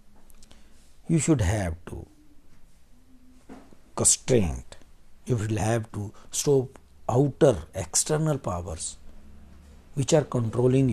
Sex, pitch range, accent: male, 90-145 Hz, native